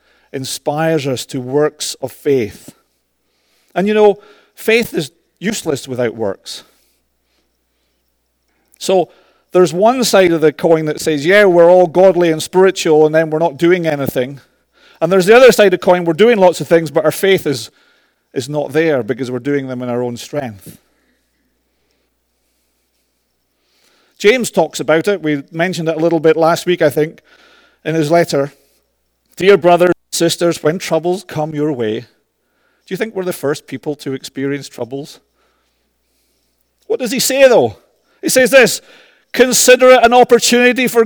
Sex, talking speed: male, 160 wpm